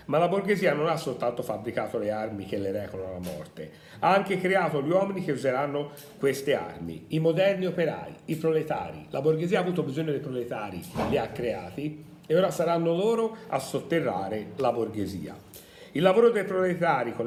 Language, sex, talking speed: Italian, male, 175 wpm